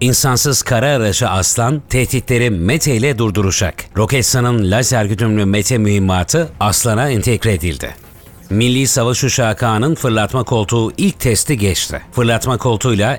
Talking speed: 120 wpm